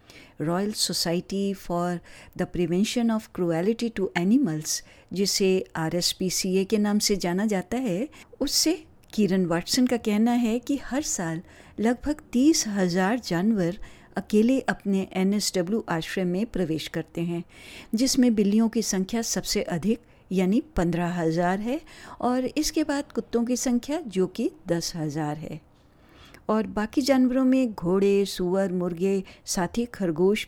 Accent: native